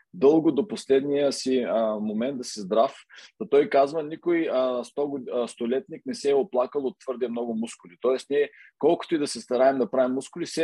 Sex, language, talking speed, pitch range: male, Bulgarian, 185 wpm, 120-150 Hz